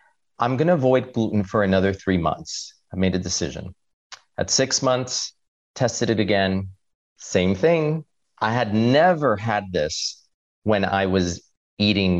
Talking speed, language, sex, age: 150 wpm, English, male, 40-59